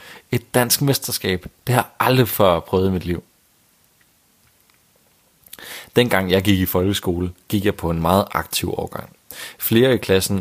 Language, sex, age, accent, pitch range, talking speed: Danish, male, 40-59, native, 90-115 Hz, 155 wpm